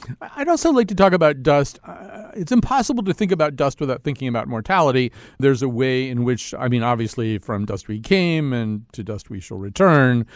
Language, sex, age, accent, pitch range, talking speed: English, male, 40-59, American, 110-135 Hz, 210 wpm